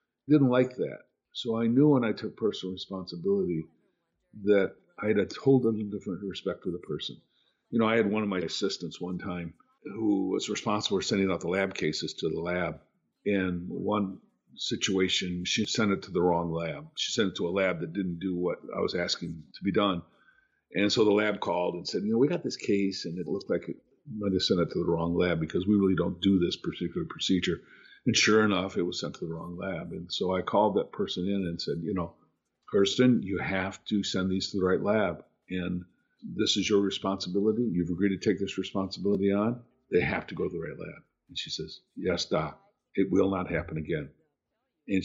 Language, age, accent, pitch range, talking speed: English, 50-69, American, 90-105 Hz, 220 wpm